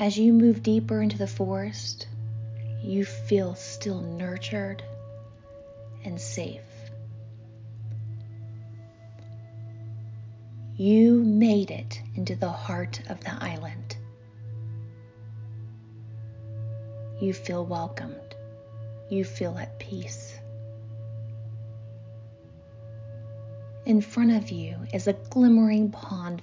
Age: 30-49